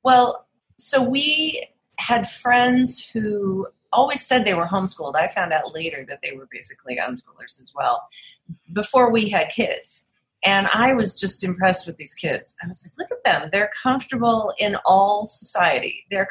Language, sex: English, female